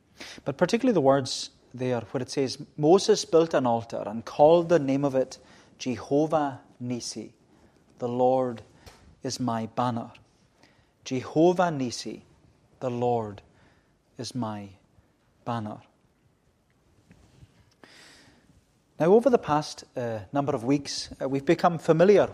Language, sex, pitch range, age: English, male, 125-150 Hz, 30-49